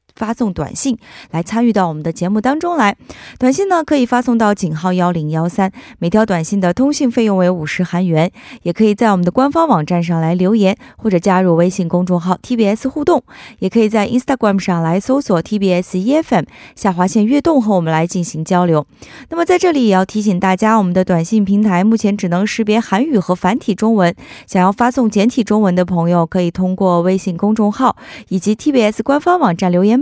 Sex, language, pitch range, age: female, Korean, 180-245 Hz, 20-39